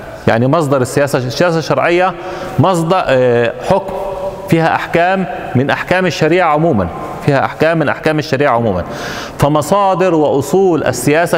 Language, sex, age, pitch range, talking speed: Arabic, male, 30-49, 145-185 Hz, 110 wpm